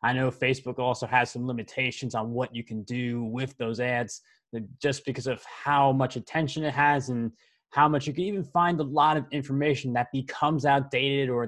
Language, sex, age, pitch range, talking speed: English, male, 20-39, 125-145 Hz, 200 wpm